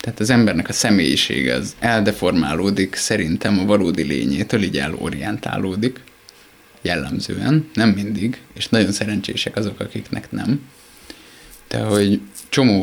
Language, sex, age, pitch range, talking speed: Hungarian, male, 20-39, 100-120 Hz, 115 wpm